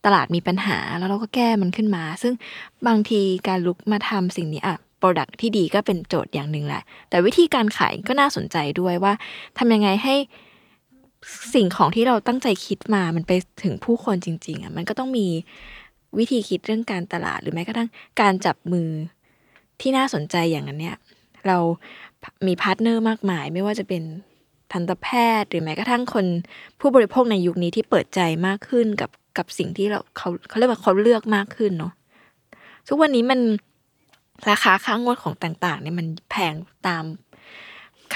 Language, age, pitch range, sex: Thai, 20-39, 180-230 Hz, female